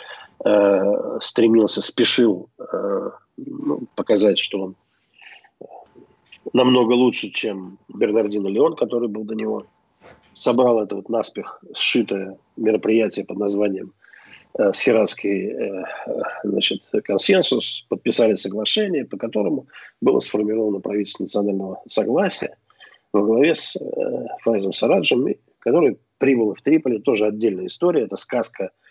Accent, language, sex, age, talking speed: native, Russian, male, 40-59, 110 wpm